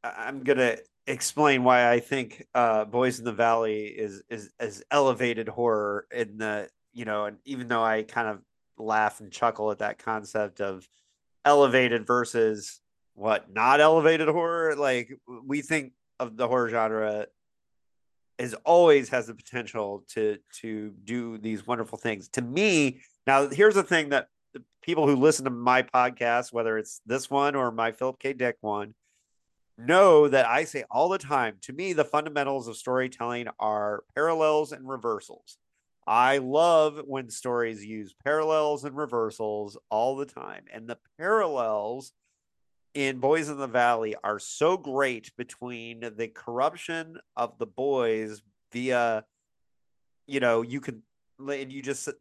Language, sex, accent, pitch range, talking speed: English, male, American, 110-140 Hz, 155 wpm